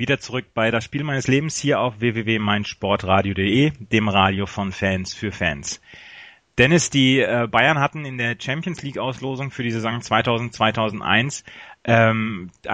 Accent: German